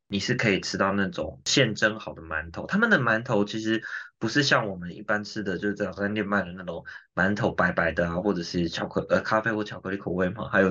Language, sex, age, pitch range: Chinese, male, 20-39, 95-115 Hz